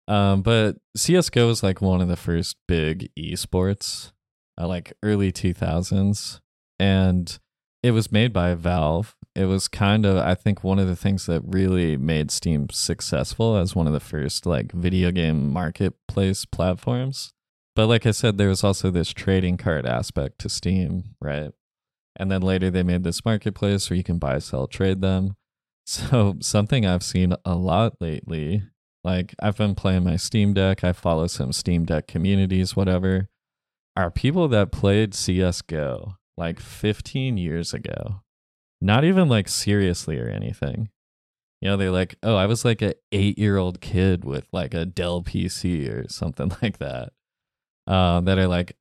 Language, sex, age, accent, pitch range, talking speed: English, male, 20-39, American, 85-105 Hz, 165 wpm